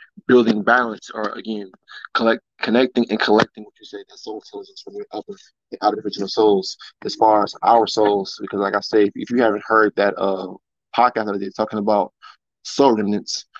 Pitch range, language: 100-115 Hz, English